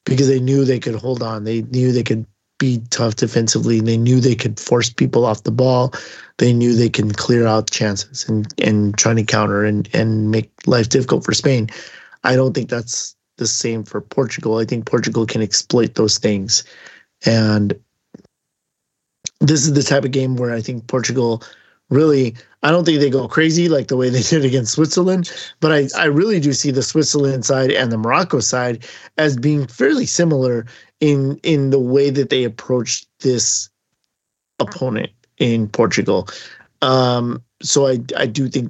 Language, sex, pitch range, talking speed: English, male, 110-135 Hz, 180 wpm